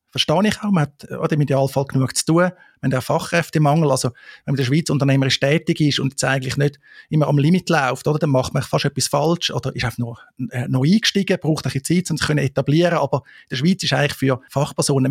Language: German